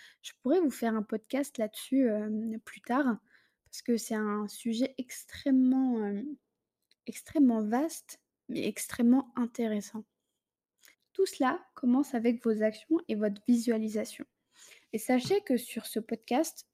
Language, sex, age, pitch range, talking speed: French, female, 20-39, 225-270 Hz, 135 wpm